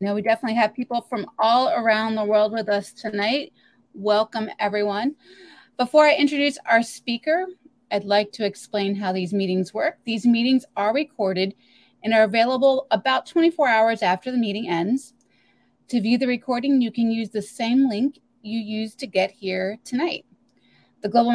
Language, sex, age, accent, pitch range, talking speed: English, female, 30-49, American, 210-260 Hz, 170 wpm